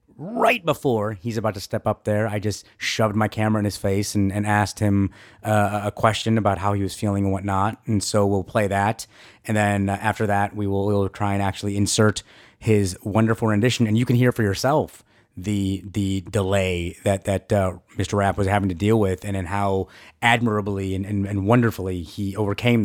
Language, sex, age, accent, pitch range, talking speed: English, male, 30-49, American, 100-115 Hz, 205 wpm